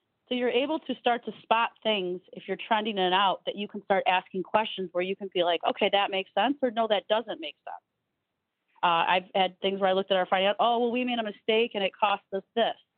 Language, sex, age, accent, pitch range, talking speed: English, female, 30-49, American, 185-230 Hz, 260 wpm